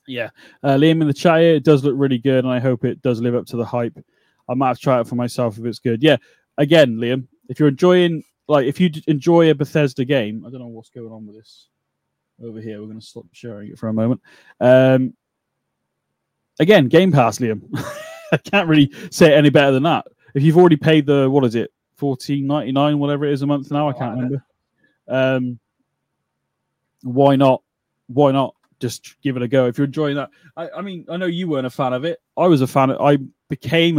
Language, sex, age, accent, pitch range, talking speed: English, male, 20-39, British, 125-150 Hz, 230 wpm